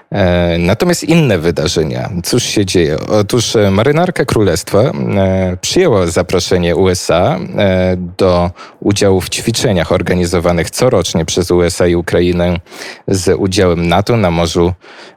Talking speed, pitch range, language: 105 wpm, 85-100 Hz, Polish